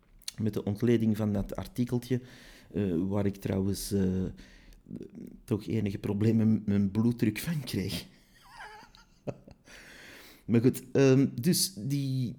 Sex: male